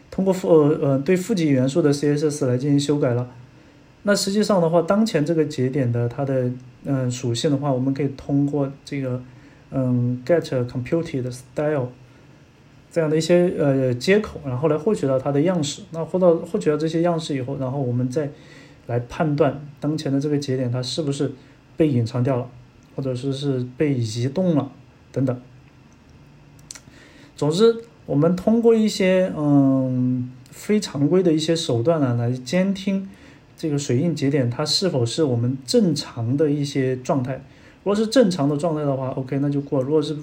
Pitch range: 130-160 Hz